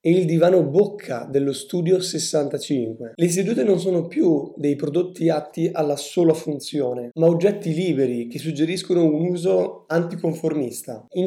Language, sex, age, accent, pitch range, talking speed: Italian, male, 20-39, native, 140-170 Hz, 145 wpm